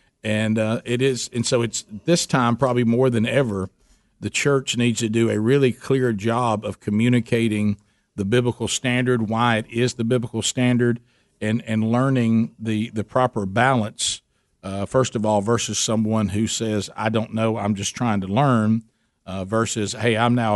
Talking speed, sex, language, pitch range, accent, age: 180 wpm, male, English, 110-125 Hz, American, 50-69